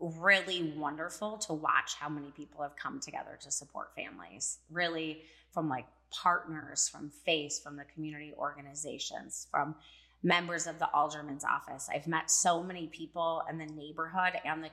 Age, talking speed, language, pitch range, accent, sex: 30-49, 160 wpm, English, 155-180 Hz, American, female